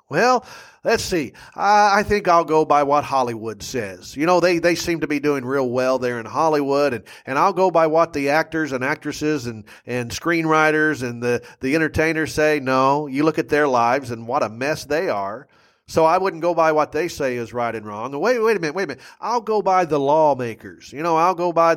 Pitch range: 125-160 Hz